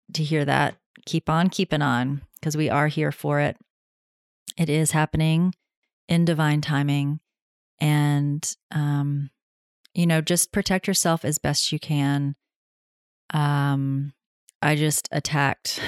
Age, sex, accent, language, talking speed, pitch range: 30-49, female, American, English, 130 wpm, 140-155 Hz